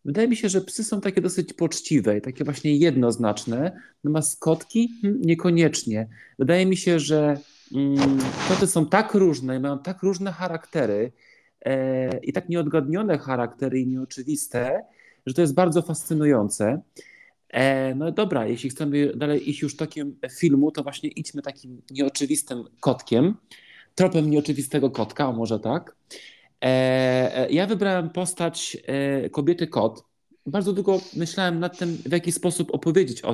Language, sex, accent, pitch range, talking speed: Polish, male, native, 130-170 Hz, 135 wpm